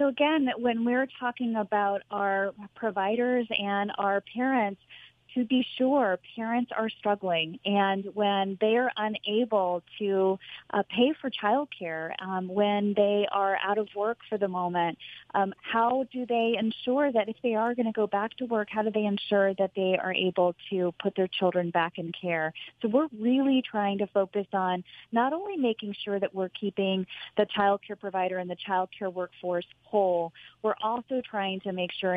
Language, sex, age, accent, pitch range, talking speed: English, female, 30-49, American, 185-220 Hz, 180 wpm